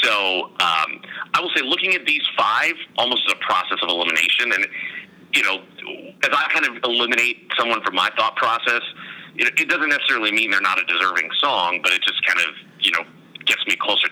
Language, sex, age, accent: English, male, 30-49, American